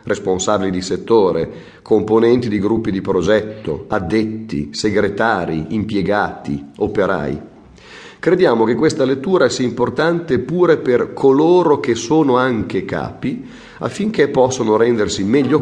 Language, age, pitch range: Italian, 40-59, 95-125 Hz